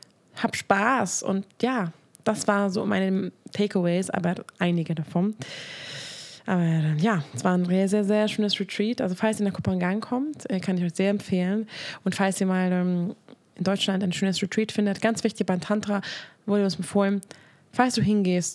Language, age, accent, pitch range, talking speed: German, 20-39, German, 180-210 Hz, 175 wpm